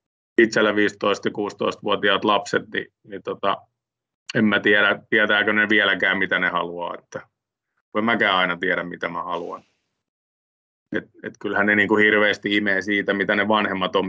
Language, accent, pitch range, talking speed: Finnish, native, 95-105 Hz, 160 wpm